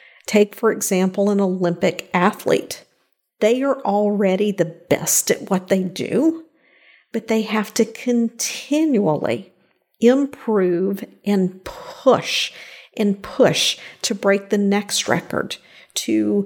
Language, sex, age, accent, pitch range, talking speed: English, female, 50-69, American, 190-230 Hz, 115 wpm